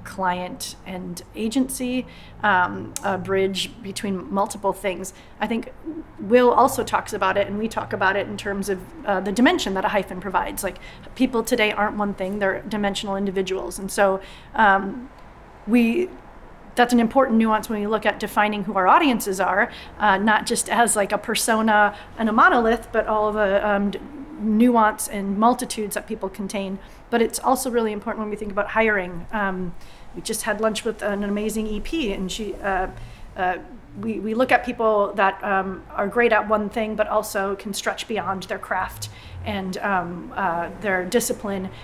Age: 30-49